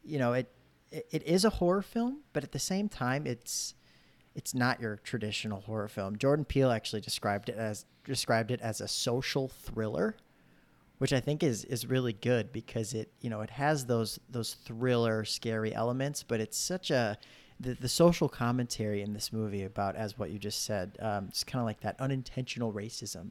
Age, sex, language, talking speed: 30-49, male, English, 195 wpm